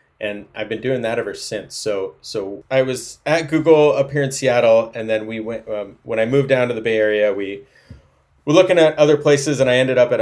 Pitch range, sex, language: 110-140 Hz, male, English